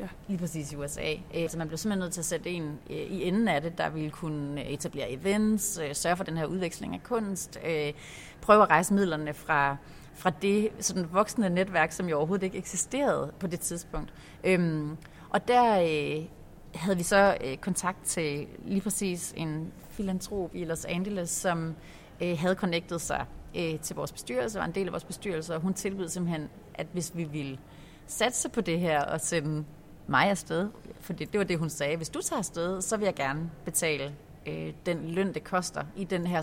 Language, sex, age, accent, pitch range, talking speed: Danish, female, 30-49, native, 155-190 Hz, 185 wpm